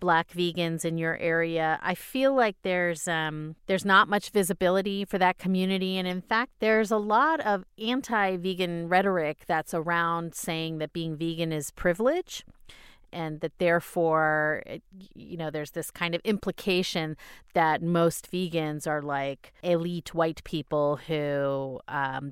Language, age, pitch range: English, 30-49, 155-190 Hz